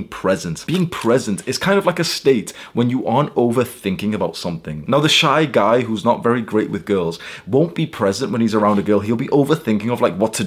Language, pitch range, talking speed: English, 105-140 Hz, 230 wpm